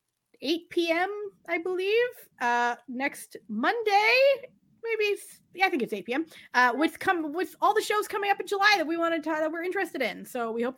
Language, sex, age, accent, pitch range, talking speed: English, female, 30-49, American, 235-330 Hz, 200 wpm